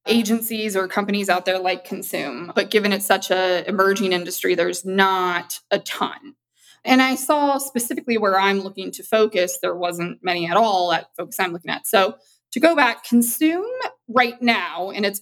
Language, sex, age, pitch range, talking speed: English, female, 20-39, 185-245 Hz, 180 wpm